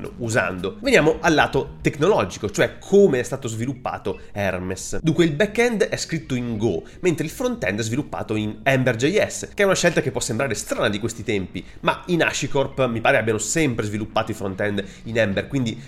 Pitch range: 110-145 Hz